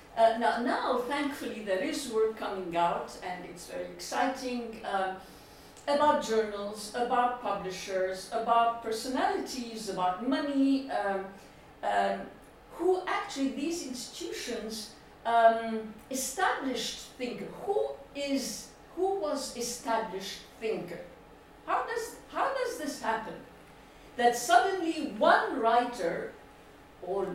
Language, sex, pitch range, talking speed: English, female, 195-275 Hz, 100 wpm